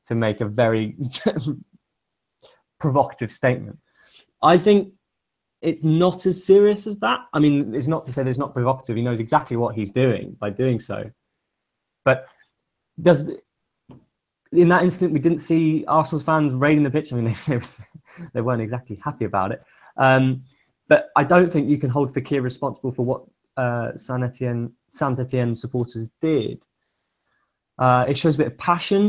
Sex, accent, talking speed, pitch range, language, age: male, British, 160 wpm, 120-155 Hz, English, 20-39